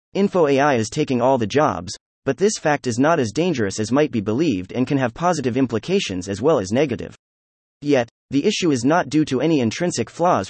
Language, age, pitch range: English, 30-49, 110-150 Hz